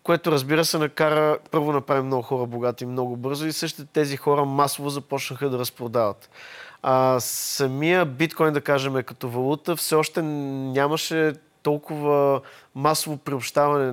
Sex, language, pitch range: male, Bulgarian, 140-170 Hz